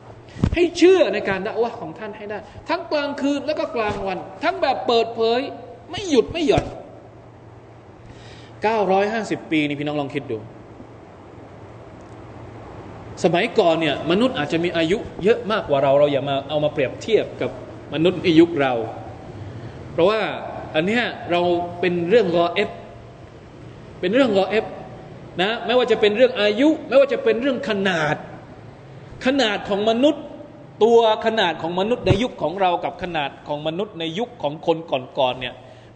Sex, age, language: male, 20-39, Thai